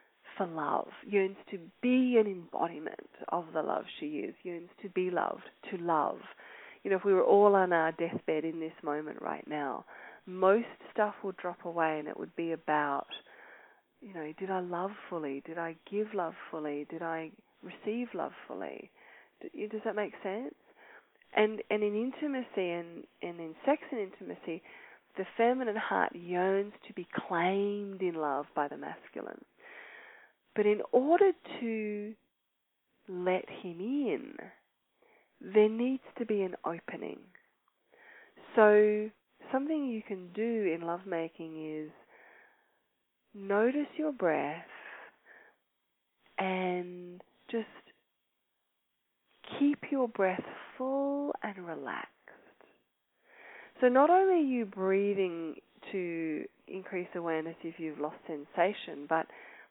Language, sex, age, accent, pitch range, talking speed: English, female, 30-49, Australian, 170-240 Hz, 130 wpm